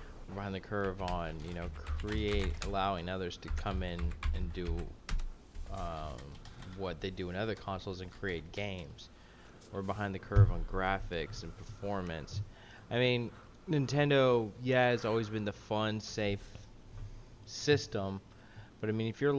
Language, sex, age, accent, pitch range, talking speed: English, male, 20-39, American, 85-110 Hz, 150 wpm